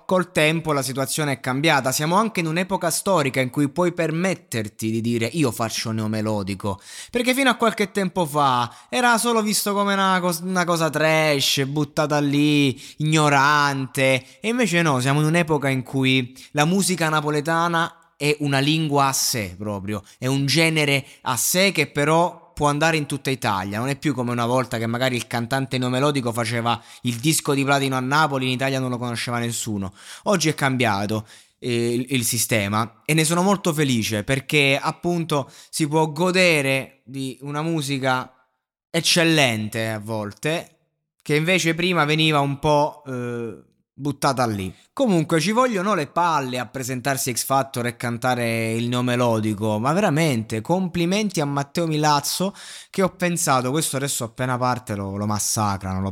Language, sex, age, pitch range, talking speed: Italian, male, 20-39, 115-160 Hz, 165 wpm